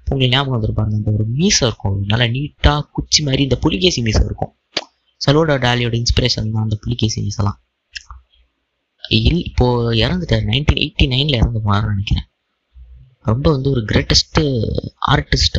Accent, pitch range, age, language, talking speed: native, 110-140 Hz, 20-39, Tamil, 75 wpm